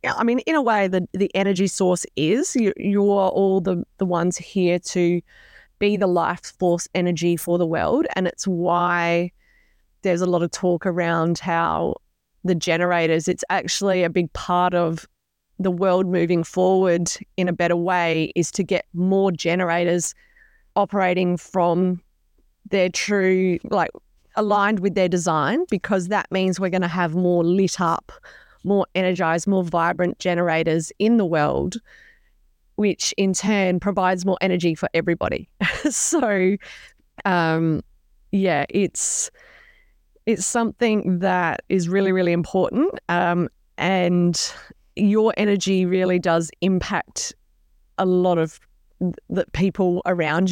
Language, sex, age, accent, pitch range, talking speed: English, female, 20-39, Australian, 175-195 Hz, 140 wpm